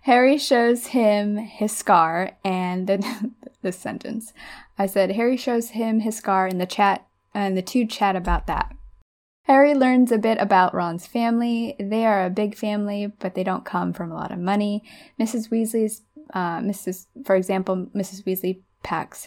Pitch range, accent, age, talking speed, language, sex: 185-220 Hz, American, 10-29, 170 wpm, English, female